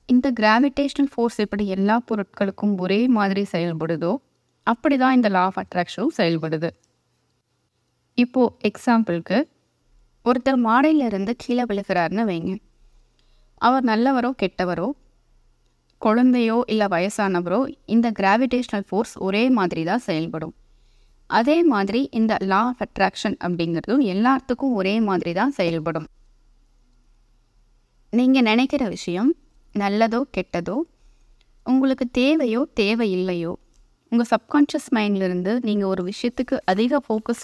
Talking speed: 100 wpm